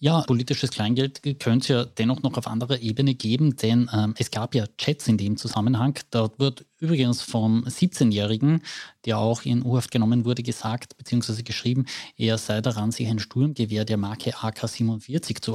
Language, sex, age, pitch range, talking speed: German, male, 20-39, 110-125 Hz, 175 wpm